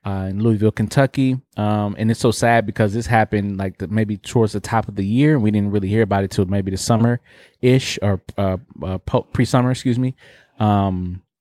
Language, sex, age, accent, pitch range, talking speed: English, male, 20-39, American, 100-120 Hz, 200 wpm